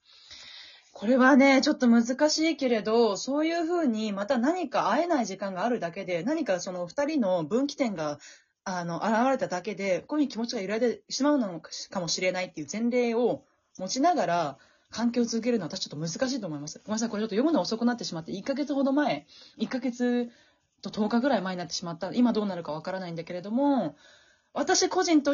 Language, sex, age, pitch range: Japanese, female, 20-39, 165-260 Hz